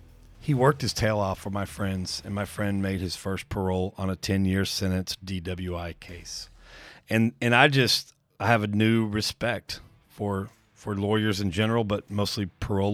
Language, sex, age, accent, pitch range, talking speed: English, male, 40-59, American, 95-115 Hz, 175 wpm